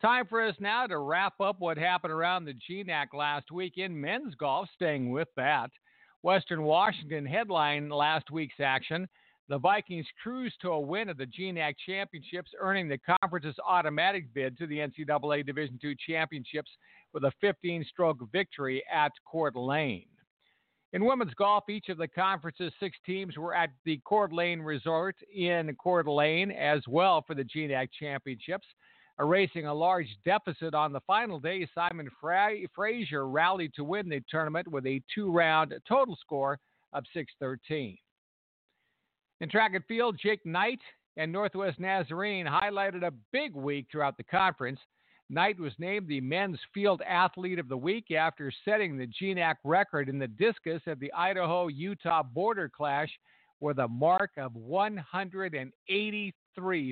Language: English